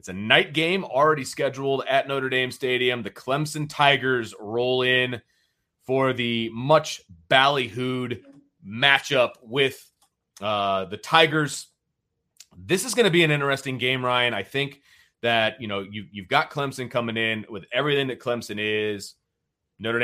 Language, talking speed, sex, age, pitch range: English, 145 wpm, male, 30-49, 105-140 Hz